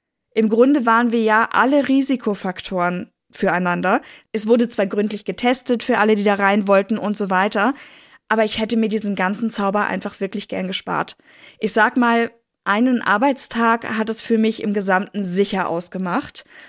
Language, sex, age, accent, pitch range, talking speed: German, female, 20-39, German, 205-245 Hz, 165 wpm